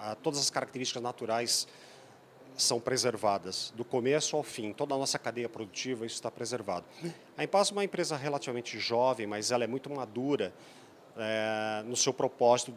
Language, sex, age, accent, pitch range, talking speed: Portuguese, male, 40-59, Brazilian, 115-145 Hz, 160 wpm